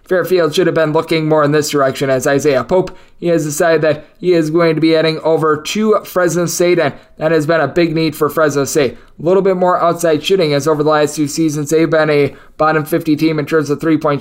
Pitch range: 155-190 Hz